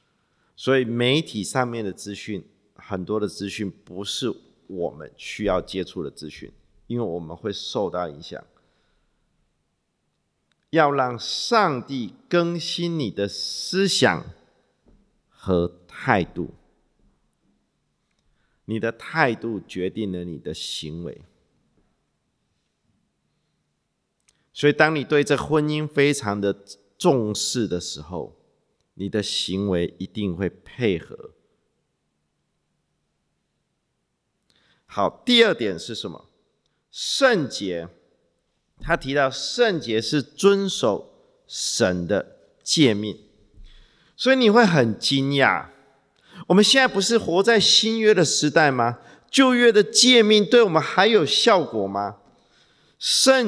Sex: male